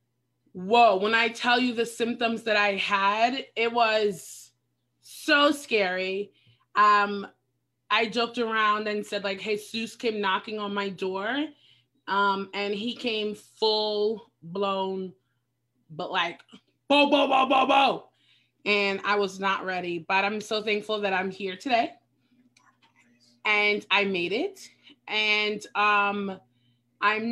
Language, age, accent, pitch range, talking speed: English, 20-39, American, 190-220 Hz, 130 wpm